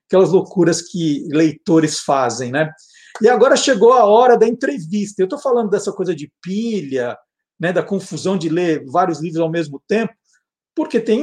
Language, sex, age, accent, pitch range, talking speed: Portuguese, male, 50-69, Brazilian, 170-235 Hz, 170 wpm